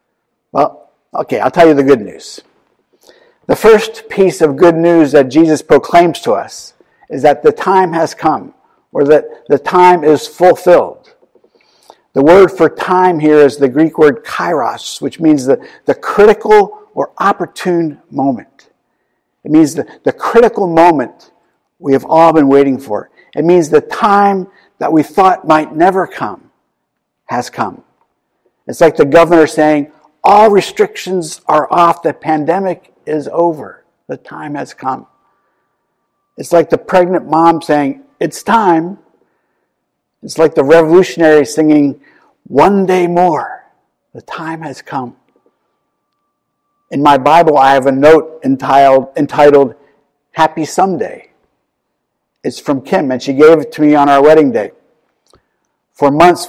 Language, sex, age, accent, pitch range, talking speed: English, male, 50-69, American, 145-190 Hz, 145 wpm